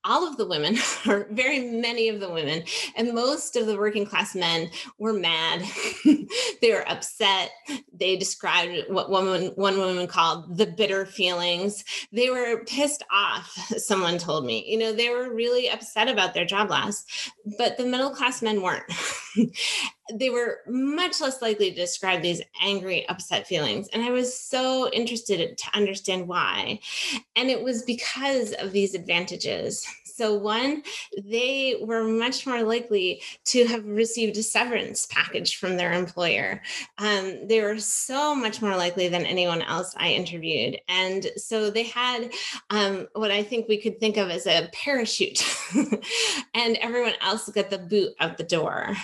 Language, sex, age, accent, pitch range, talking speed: English, female, 30-49, American, 195-245 Hz, 165 wpm